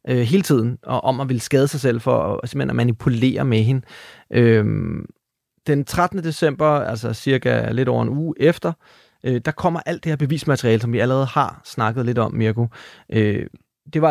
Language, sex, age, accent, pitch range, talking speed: Danish, male, 30-49, native, 120-155 Hz, 180 wpm